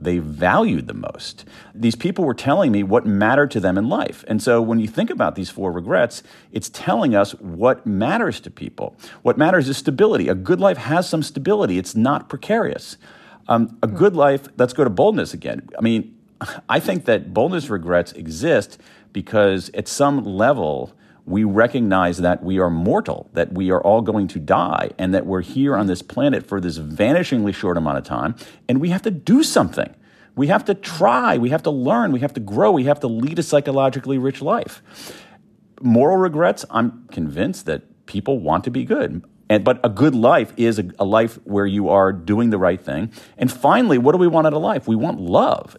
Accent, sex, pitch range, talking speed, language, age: American, male, 100-145 Hz, 200 wpm, English, 50-69